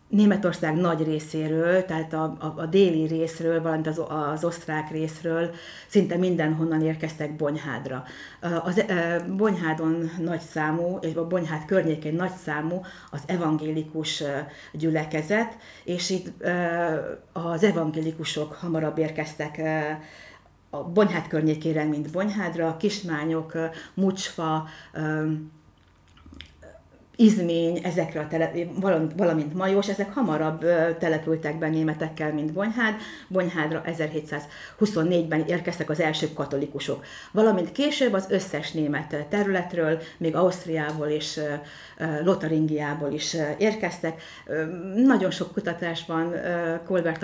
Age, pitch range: 60-79, 155-175 Hz